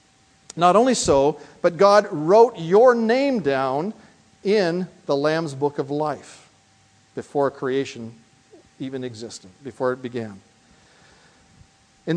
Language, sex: English, male